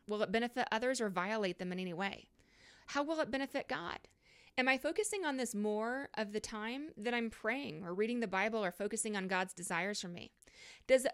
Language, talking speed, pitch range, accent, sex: English, 215 wpm, 195-255 Hz, American, female